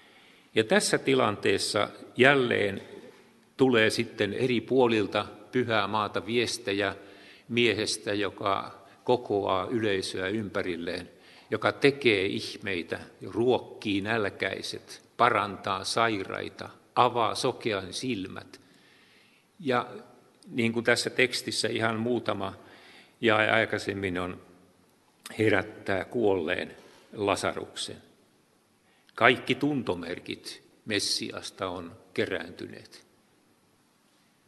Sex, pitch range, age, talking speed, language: male, 100-125 Hz, 50-69, 75 wpm, Finnish